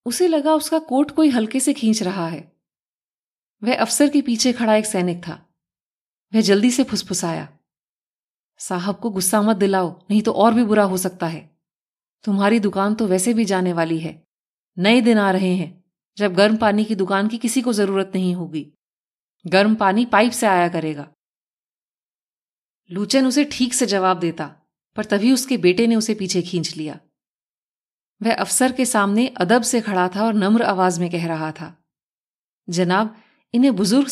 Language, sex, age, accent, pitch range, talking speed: Hindi, female, 30-49, native, 180-240 Hz, 170 wpm